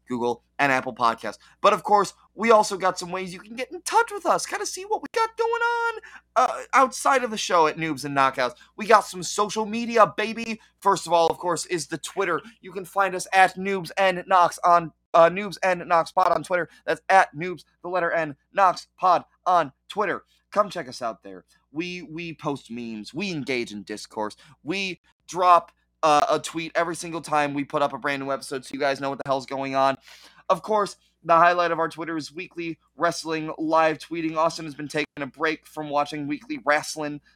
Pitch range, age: 140-180 Hz, 20-39